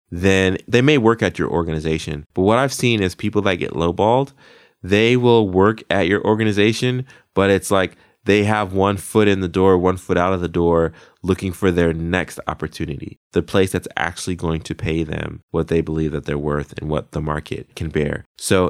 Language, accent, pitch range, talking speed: English, American, 80-100 Hz, 205 wpm